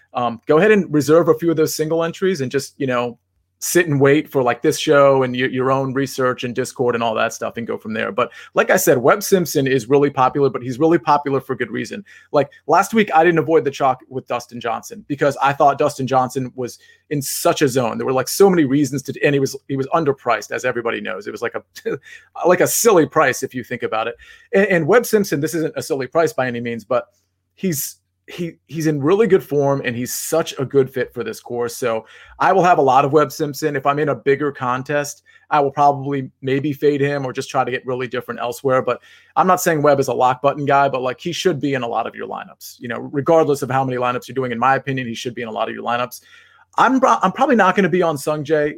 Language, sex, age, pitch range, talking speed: English, male, 30-49, 130-160 Hz, 260 wpm